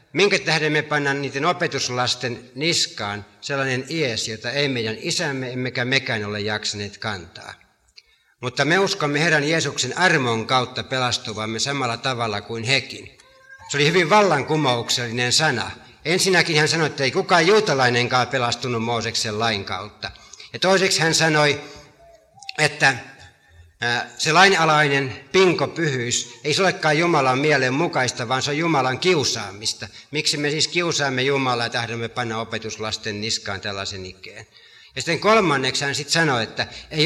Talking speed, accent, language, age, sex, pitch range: 135 wpm, native, Finnish, 60-79, male, 115-155 Hz